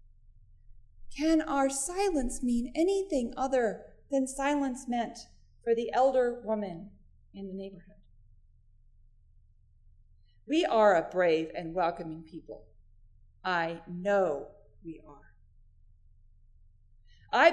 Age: 40-59